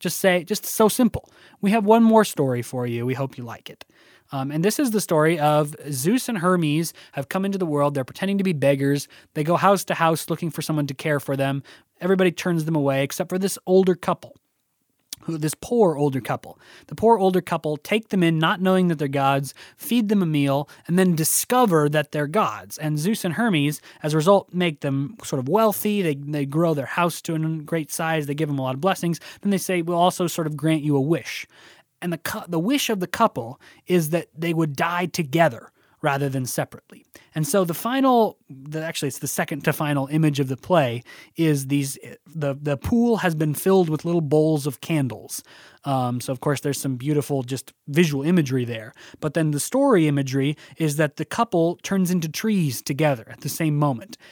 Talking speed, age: 215 wpm, 20-39